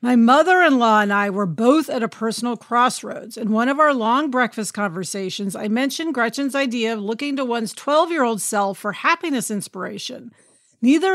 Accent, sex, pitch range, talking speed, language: American, female, 220-290 Hz, 165 wpm, English